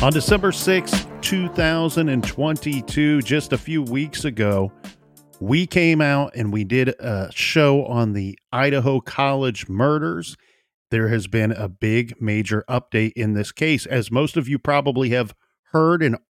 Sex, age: male, 40-59